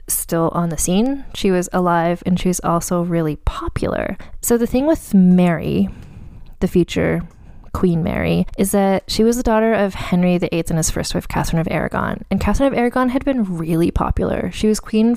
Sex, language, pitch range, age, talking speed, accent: female, English, 170-210 Hz, 20-39, 195 wpm, American